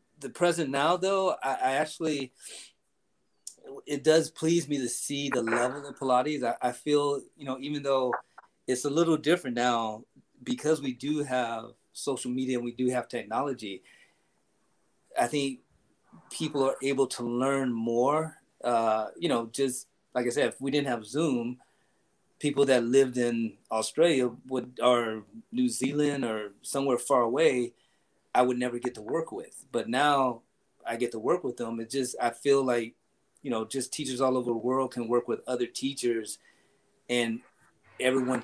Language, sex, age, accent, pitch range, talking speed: Portuguese, male, 30-49, American, 120-140 Hz, 165 wpm